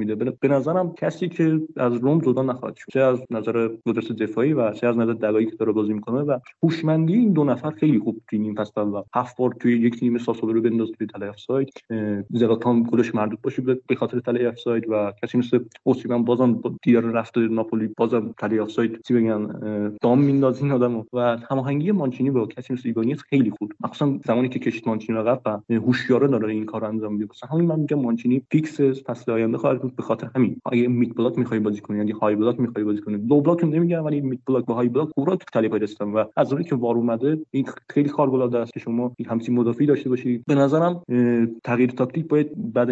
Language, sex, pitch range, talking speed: Persian, male, 110-130 Hz, 160 wpm